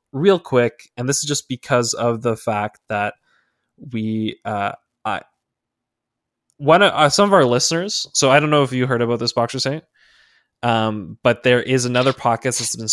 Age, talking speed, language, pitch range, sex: 20-39, 185 wpm, English, 110-145 Hz, male